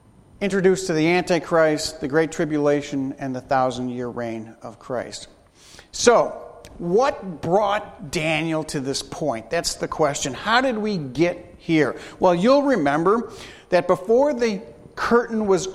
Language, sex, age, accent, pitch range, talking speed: English, male, 40-59, American, 160-220 Hz, 135 wpm